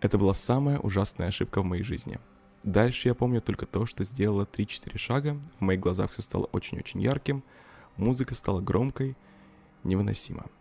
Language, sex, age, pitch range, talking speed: Russian, male, 20-39, 95-115 Hz, 165 wpm